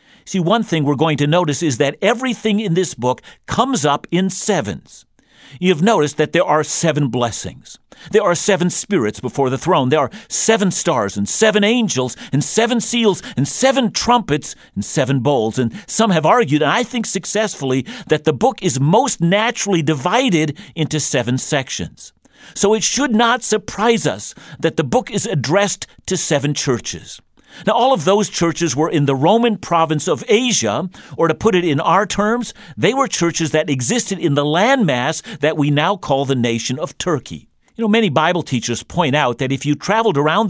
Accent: American